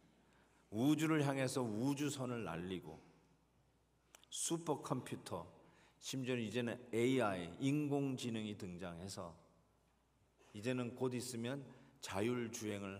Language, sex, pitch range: Korean, male, 110-140 Hz